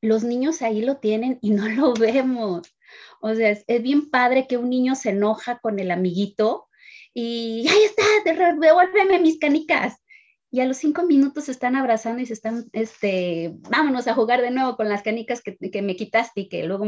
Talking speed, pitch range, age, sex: 195 wpm, 195-235 Hz, 30-49, female